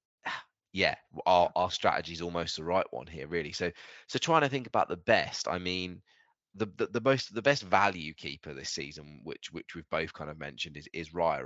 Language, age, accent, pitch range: English, 20-39, British, 80-100 Hz